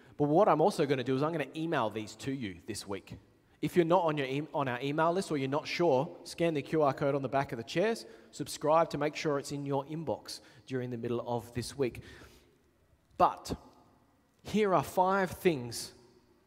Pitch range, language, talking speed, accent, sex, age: 115-160 Hz, English, 220 wpm, Australian, male, 30-49